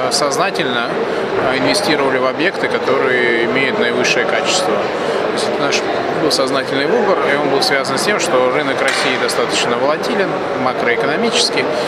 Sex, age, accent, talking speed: male, 20-39, native, 125 wpm